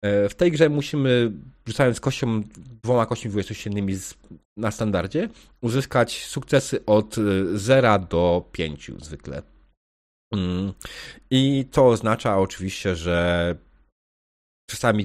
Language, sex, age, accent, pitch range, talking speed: Polish, male, 40-59, native, 95-115 Hz, 95 wpm